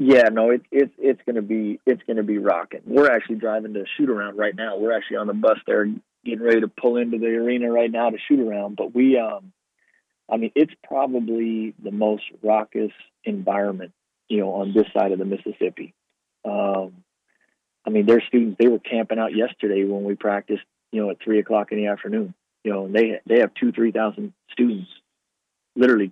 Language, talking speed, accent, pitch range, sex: English, 200 wpm, American, 105-115 Hz, male